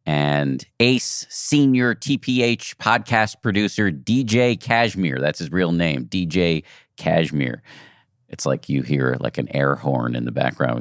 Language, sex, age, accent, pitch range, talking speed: English, male, 50-69, American, 75-115 Hz, 140 wpm